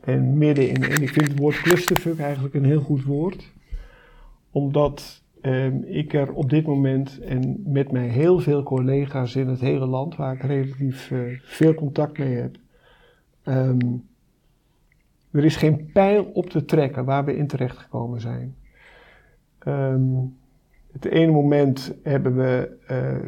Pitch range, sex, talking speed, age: 130-150 Hz, male, 145 wpm, 50-69